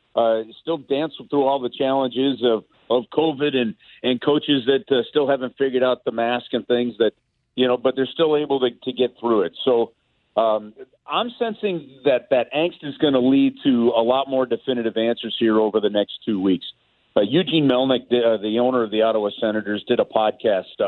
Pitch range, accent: 115-145 Hz, American